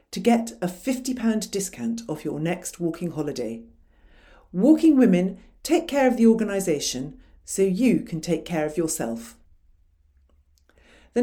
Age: 50-69